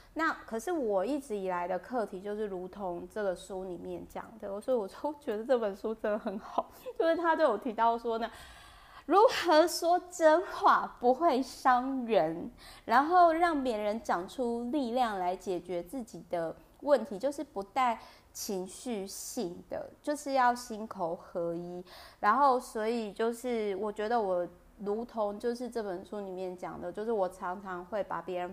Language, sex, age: Chinese, female, 20-39